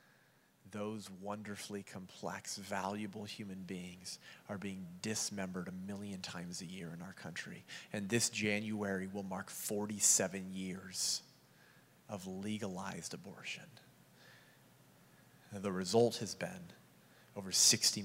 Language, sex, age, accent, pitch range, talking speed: English, male, 30-49, American, 95-105 Hz, 110 wpm